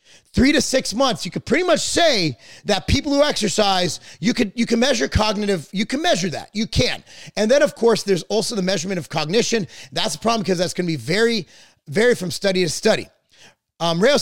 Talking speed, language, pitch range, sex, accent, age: 215 wpm, English, 170-230 Hz, male, American, 30-49